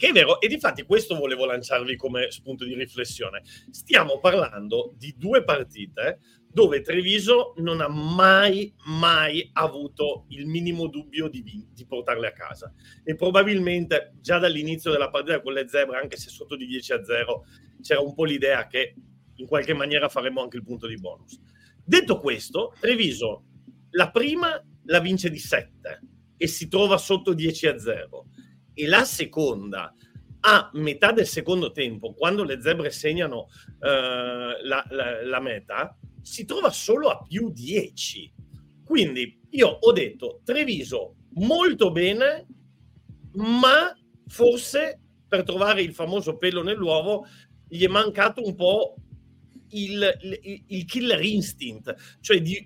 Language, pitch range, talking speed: Italian, 145-220 Hz, 145 wpm